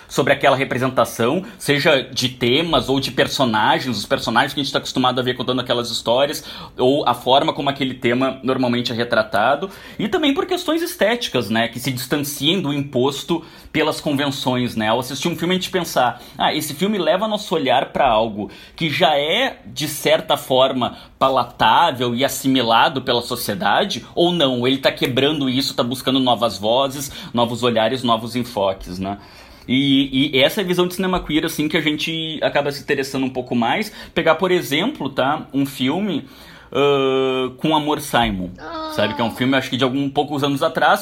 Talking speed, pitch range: 185 wpm, 130-180 Hz